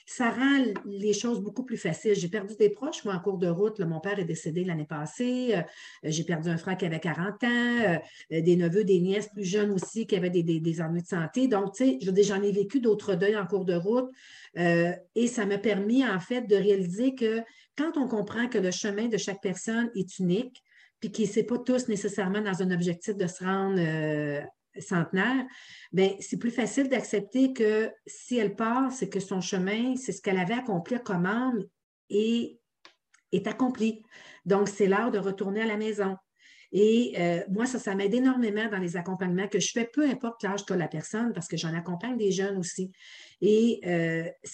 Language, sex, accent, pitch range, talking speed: French, female, Canadian, 185-225 Hz, 210 wpm